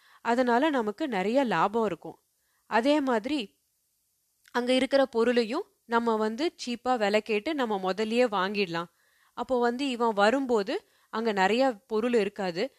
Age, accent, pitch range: 30-49, native, 200-250 Hz